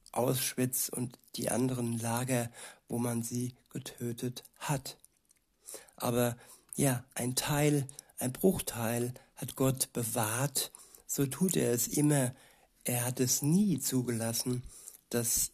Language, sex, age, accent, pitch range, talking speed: German, male, 60-79, German, 120-135 Hz, 115 wpm